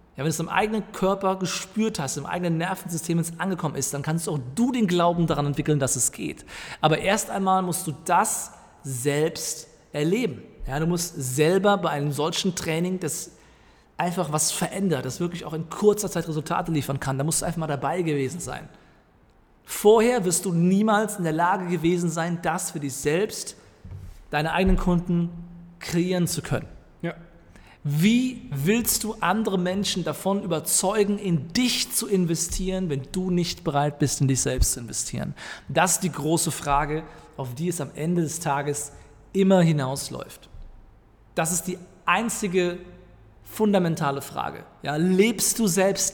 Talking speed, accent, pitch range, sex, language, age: 165 wpm, German, 145-185 Hz, male, German, 40-59